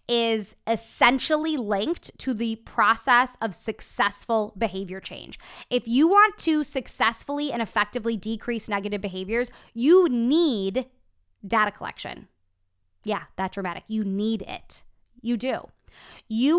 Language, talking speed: English, 120 wpm